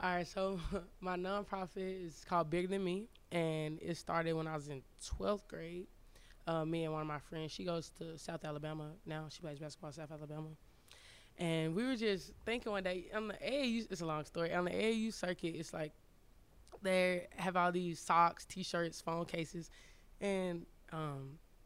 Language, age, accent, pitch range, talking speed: English, 20-39, American, 150-180 Hz, 190 wpm